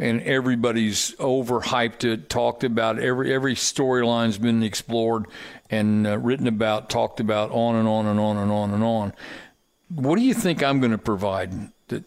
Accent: American